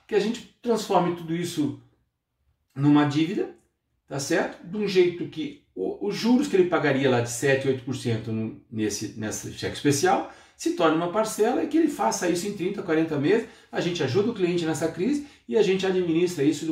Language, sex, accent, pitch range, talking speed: Portuguese, male, Brazilian, 130-180 Hz, 195 wpm